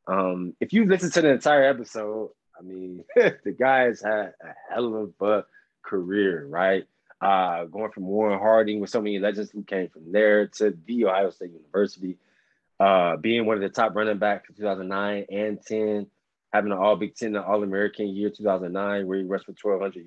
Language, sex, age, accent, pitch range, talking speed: English, male, 20-39, American, 95-115 Hz, 190 wpm